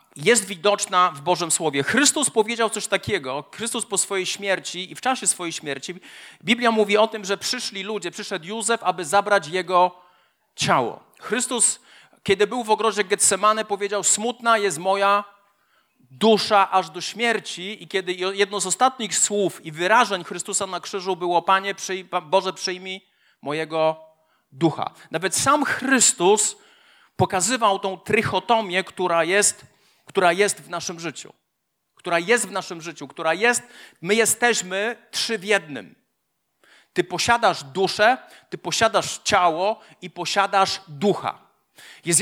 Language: Polish